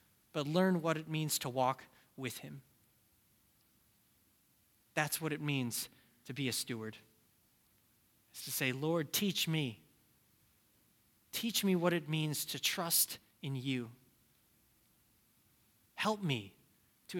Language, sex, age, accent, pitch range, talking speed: English, male, 20-39, American, 115-155 Hz, 120 wpm